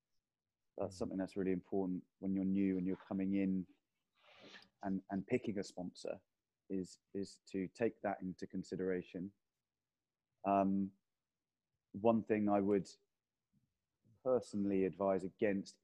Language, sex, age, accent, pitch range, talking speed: English, male, 20-39, British, 95-105 Hz, 120 wpm